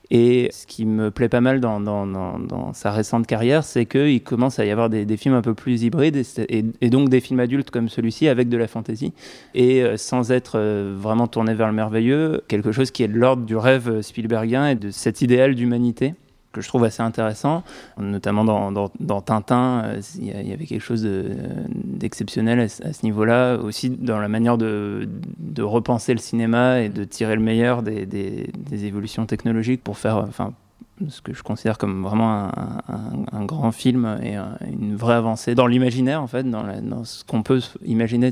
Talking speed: 210 wpm